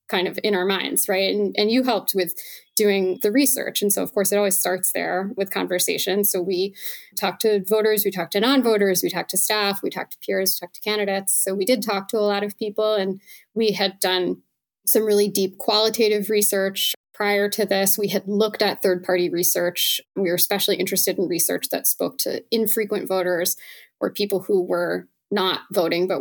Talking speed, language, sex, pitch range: 205 wpm, English, female, 185-215 Hz